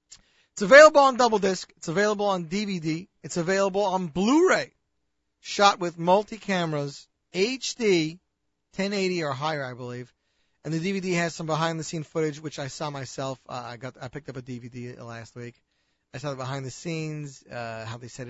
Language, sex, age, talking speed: English, male, 40-59, 165 wpm